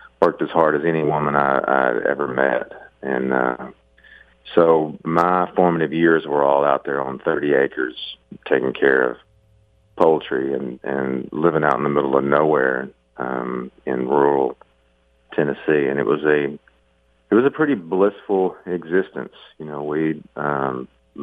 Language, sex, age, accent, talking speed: English, male, 40-59, American, 155 wpm